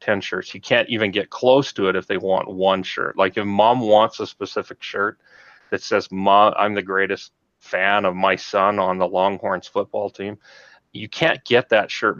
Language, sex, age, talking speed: English, male, 30-49, 195 wpm